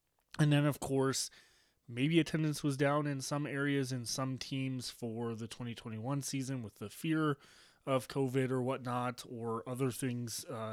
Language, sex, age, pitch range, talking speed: English, male, 20-39, 115-140 Hz, 155 wpm